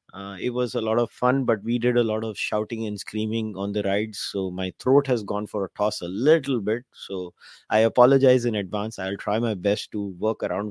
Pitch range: 100-120 Hz